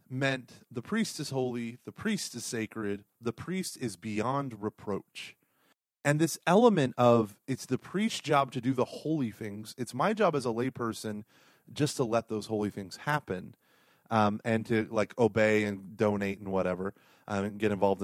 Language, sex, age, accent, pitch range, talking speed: English, male, 30-49, American, 105-145 Hz, 175 wpm